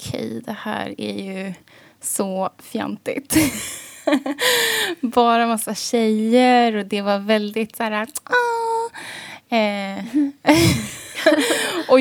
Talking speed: 95 wpm